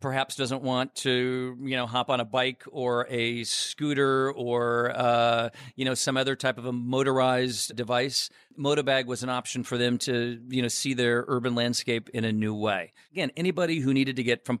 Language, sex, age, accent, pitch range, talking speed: English, male, 40-59, American, 120-140 Hz, 195 wpm